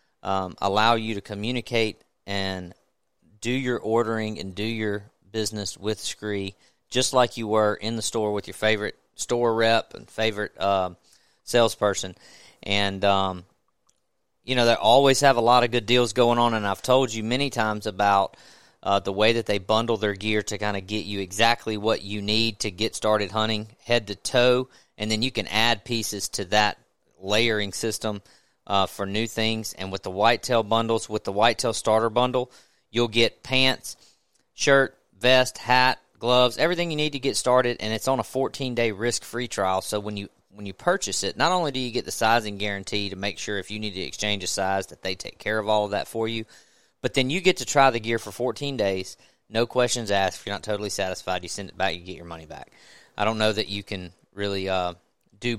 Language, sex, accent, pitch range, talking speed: English, male, American, 100-120 Hz, 205 wpm